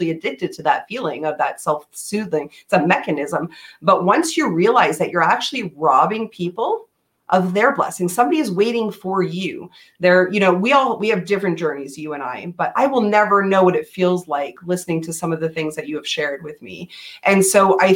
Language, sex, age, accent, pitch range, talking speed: English, female, 30-49, American, 175-225 Hz, 215 wpm